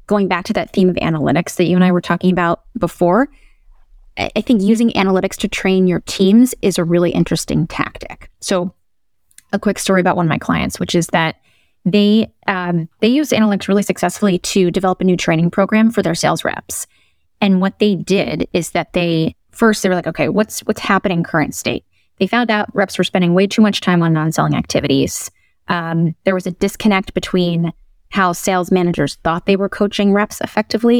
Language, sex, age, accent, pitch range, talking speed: English, female, 20-39, American, 175-205 Hz, 200 wpm